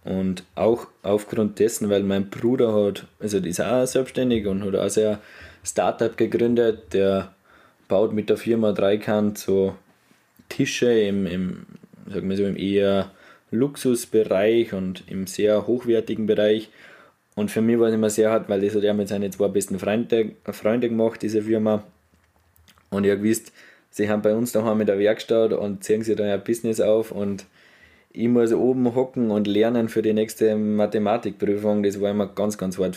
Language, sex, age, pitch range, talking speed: German, male, 20-39, 100-115 Hz, 175 wpm